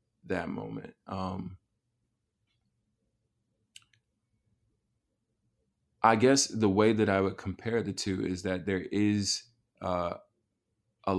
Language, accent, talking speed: English, American, 100 wpm